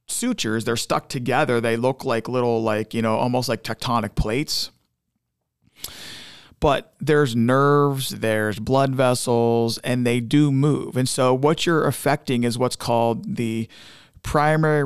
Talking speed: 140 wpm